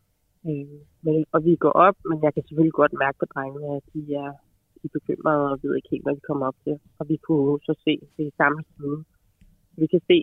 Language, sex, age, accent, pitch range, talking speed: Danish, female, 30-49, native, 145-165 Hz, 230 wpm